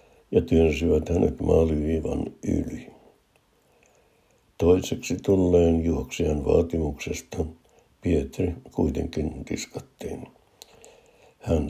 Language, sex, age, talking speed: Finnish, male, 60-79, 65 wpm